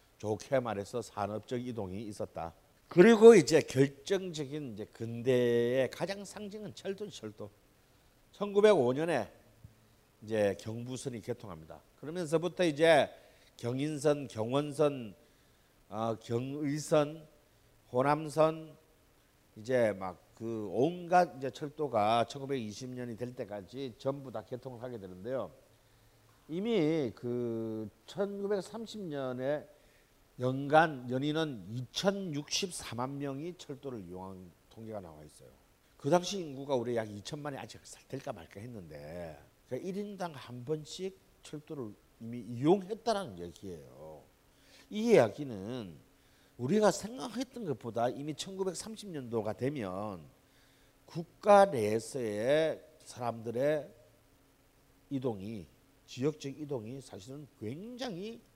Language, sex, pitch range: Korean, male, 115-155 Hz